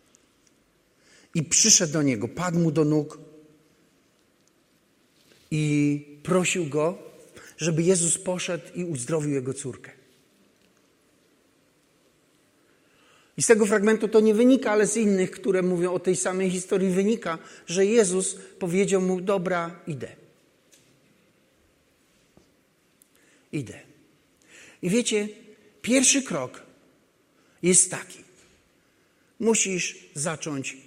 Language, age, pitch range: Polish, 50-69, 175-260 Hz